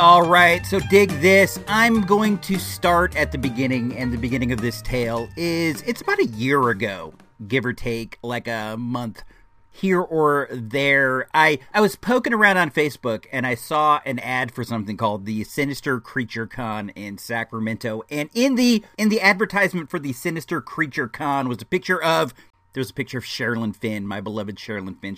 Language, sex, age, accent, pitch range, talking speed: English, male, 40-59, American, 115-170 Hz, 190 wpm